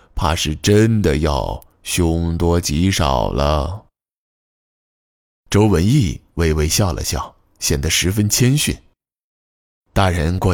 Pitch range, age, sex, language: 80-105 Hz, 20-39, male, Chinese